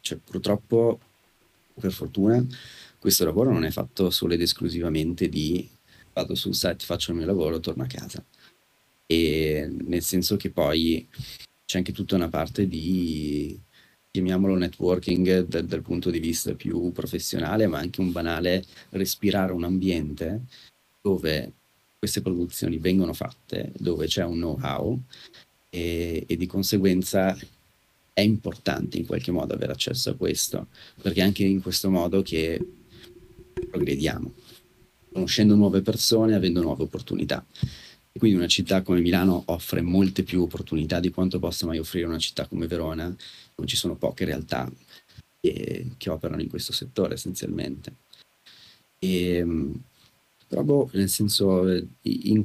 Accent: native